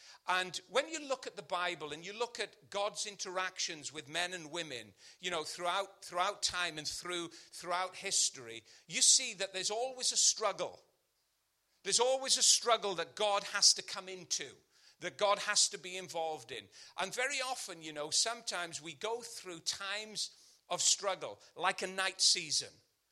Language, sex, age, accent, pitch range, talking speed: English, male, 40-59, British, 180-235 Hz, 170 wpm